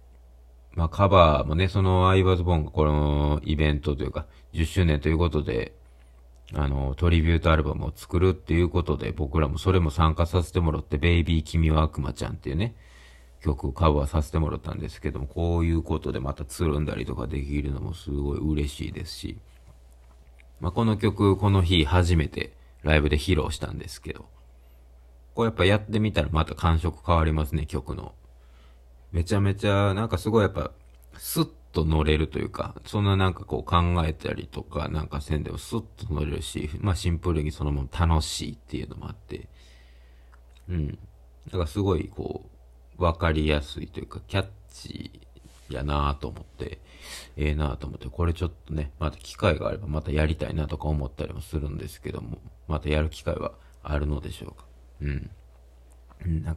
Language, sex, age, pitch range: Japanese, male, 40-59, 70-85 Hz